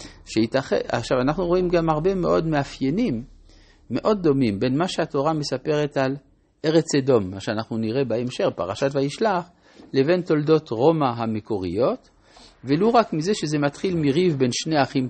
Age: 50-69